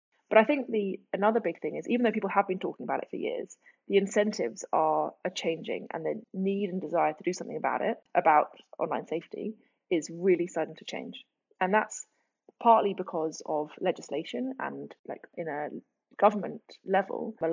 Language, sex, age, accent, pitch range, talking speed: English, female, 20-39, British, 175-220 Hz, 185 wpm